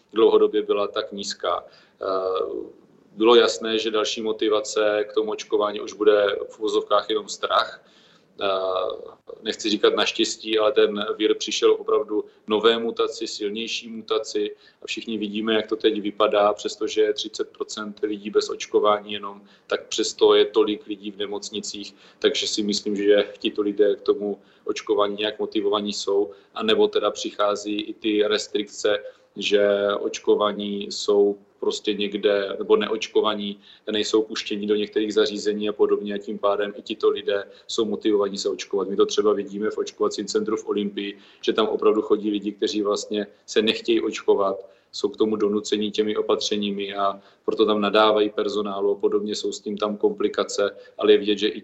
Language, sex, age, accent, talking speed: Czech, male, 40-59, native, 160 wpm